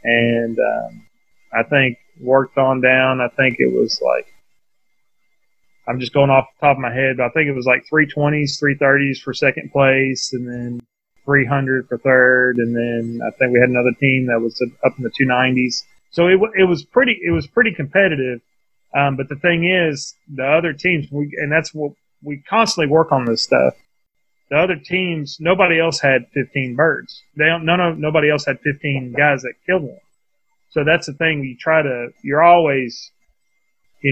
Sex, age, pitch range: male, 30-49, 130-165 Hz